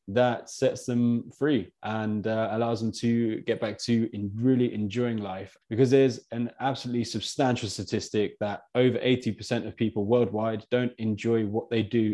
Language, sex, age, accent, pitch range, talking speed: English, male, 20-39, British, 105-120 Hz, 160 wpm